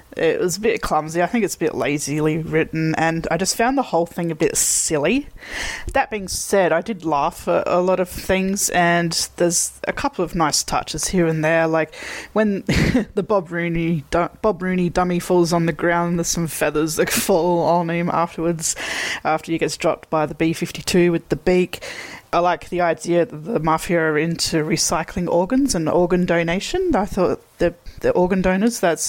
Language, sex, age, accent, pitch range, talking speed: English, female, 20-39, Australian, 165-195 Hz, 195 wpm